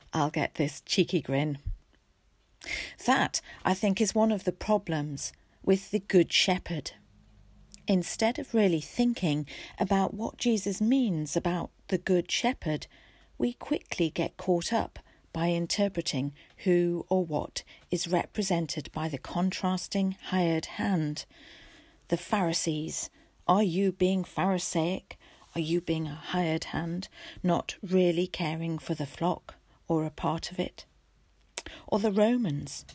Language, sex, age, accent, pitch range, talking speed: English, female, 40-59, British, 160-200 Hz, 130 wpm